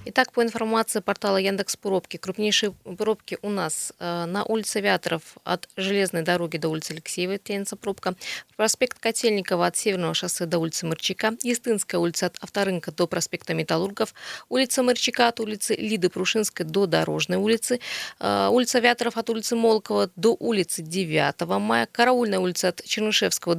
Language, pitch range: Russian, 180-230 Hz